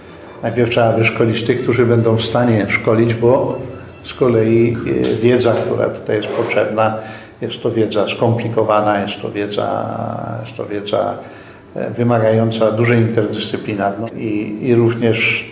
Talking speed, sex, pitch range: 125 wpm, male, 110-130 Hz